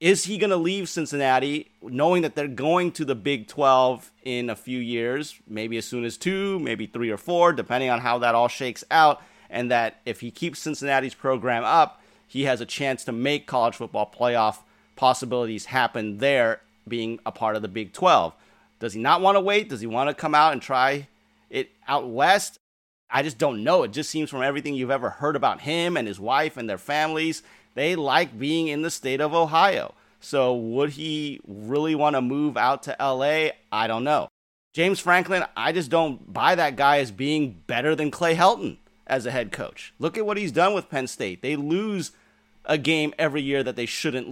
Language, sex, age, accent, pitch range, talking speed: English, male, 30-49, American, 120-160 Hz, 210 wpm